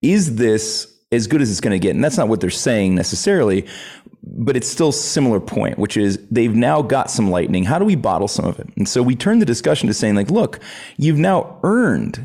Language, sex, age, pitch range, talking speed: English, male, 30-49, 95-125 Hz, 235 wpm